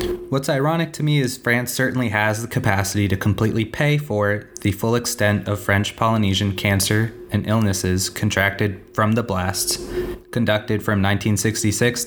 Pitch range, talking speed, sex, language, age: 100-130 Hz, 150 wpm, male, English, 20-39